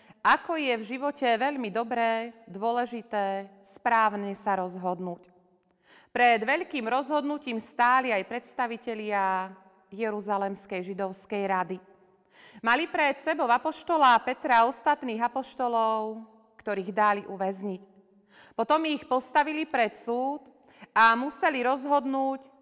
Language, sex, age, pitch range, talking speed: Slovak, female, 30-49, 200-260 Hz, 100 wpm